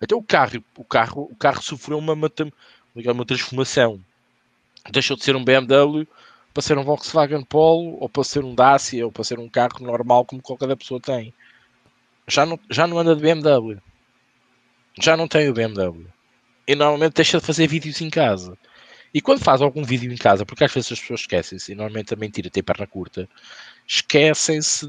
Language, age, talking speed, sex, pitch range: Portuguese, 20-39, 190 wpm, male, 110-140 Hz